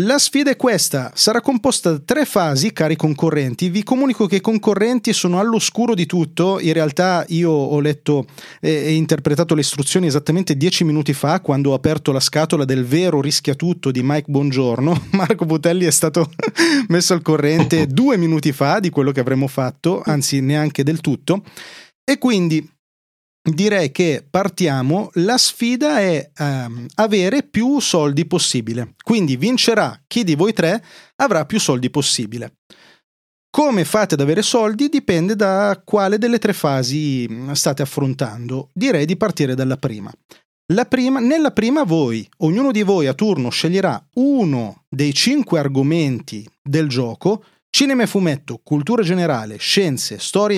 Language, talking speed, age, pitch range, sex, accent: Italian, 155 wpm, 30-49, 145-205 Hz, male, native